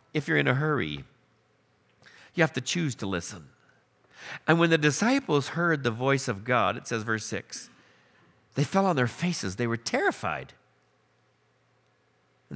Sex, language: male, English